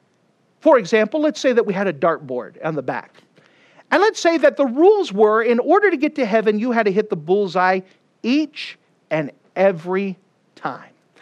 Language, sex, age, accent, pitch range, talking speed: English, male, 40-59, American, 195-295 Hz, 185 wpm